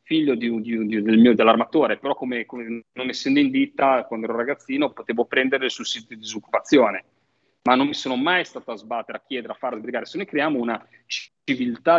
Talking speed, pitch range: 180 wpm, 120-145 Hz